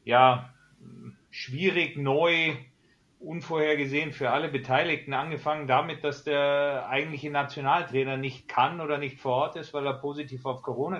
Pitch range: 125-145 Hz